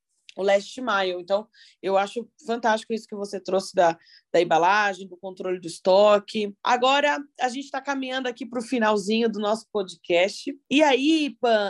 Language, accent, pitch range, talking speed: Portuguese, Brazilian, 195-230 Hz, 170 wpm